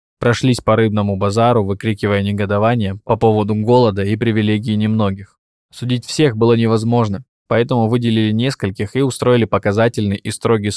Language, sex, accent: Russian, male, native